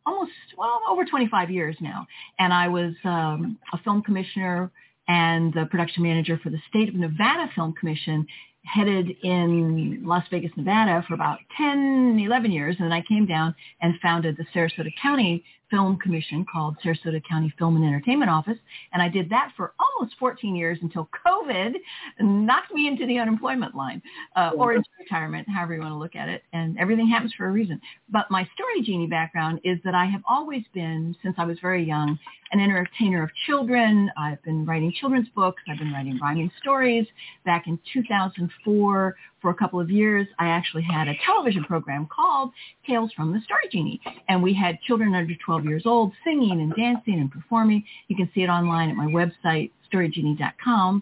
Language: English